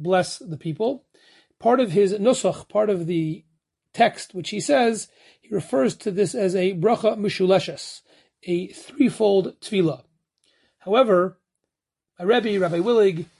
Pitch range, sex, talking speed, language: 170-215 Hz, male, 135 wpm, English